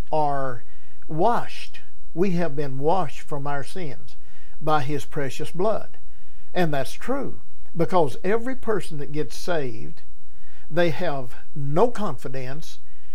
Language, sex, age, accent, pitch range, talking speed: English, male, 60-79, American, 120-175 Hz, 120 wpm